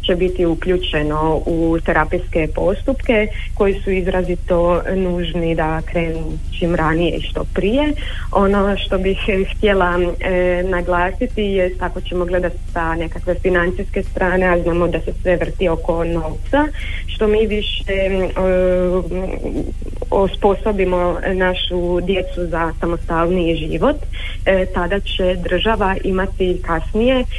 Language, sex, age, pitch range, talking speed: Croatian, female, 30-49, 175-195 Hz, 120 wpm